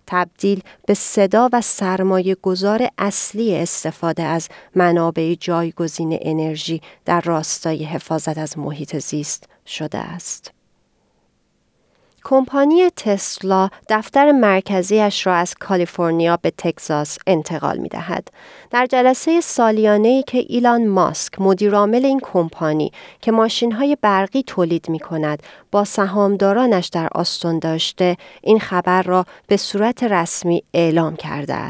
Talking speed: 115 wpm